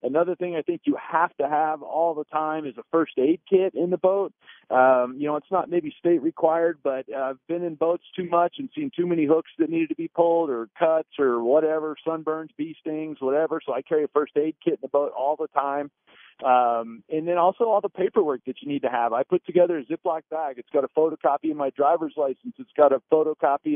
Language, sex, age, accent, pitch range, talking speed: English, male, 50-69, American, 140-170 Hz, 250 wpm